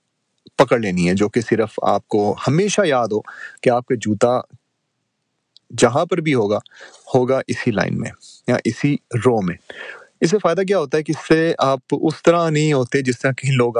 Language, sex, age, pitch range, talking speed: Urdu, male, 30-49, 110-135 Hz, 195 wpm